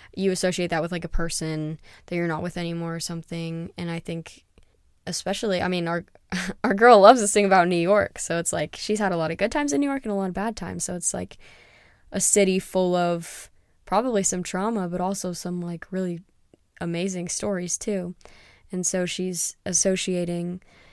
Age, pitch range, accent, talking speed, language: 10-29, 170-185 Hz, American, 200 wpm, English